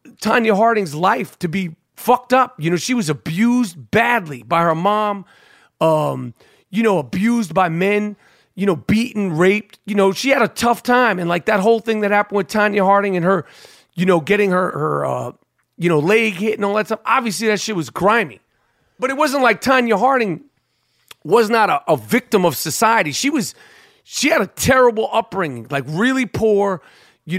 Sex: male